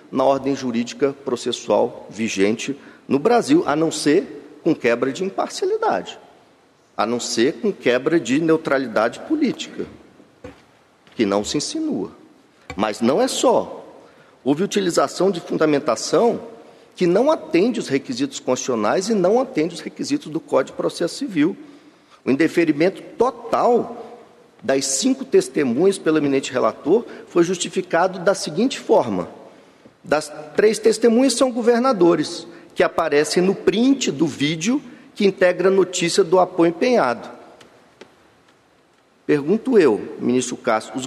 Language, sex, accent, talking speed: Portuguese, male, Brazilian, 125 wpm